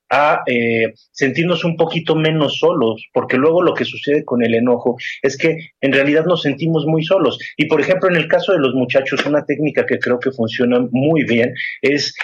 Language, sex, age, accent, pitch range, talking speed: Spanish, male, 30-49, Mexican, 125-160 Hz, 200 wpm